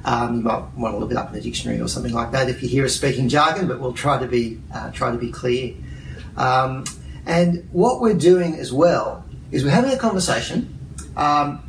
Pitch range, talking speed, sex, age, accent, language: 120-145 Hz, 225 wpm, male, 40-59, Australian, English